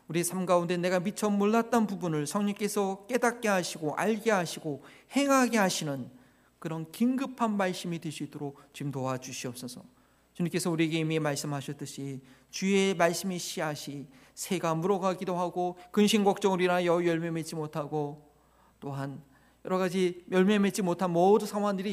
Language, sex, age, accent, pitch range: Korean, male, 40-59, native, 160-220 Hz